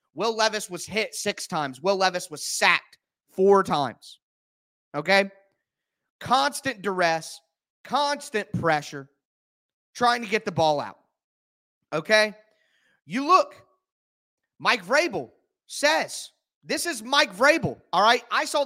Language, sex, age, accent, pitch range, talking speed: English, male, 30-49, American, 185-245 Hz, 120 wpm